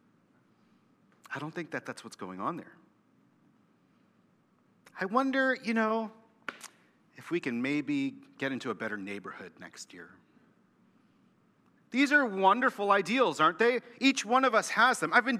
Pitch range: 145-225 Hz